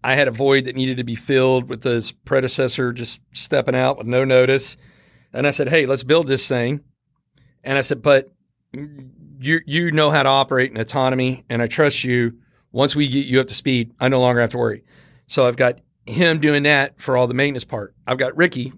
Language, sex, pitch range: English, male, 130-150 Hz